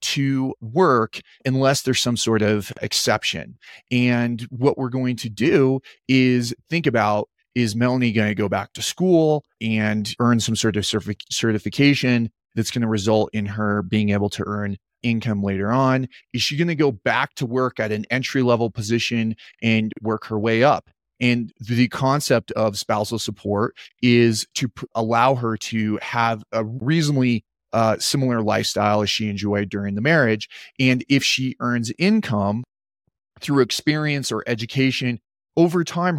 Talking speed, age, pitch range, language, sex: 160 wpm, 30-49, 110-130 Hz, English, male